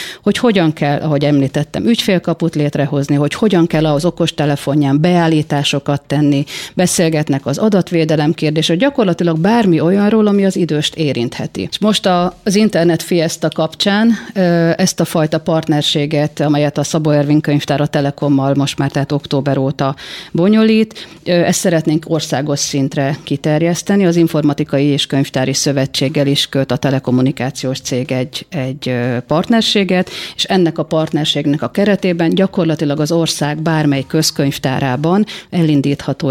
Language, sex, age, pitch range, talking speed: Hungarian, female, 40-59, 140-170 Hz, 130 wpm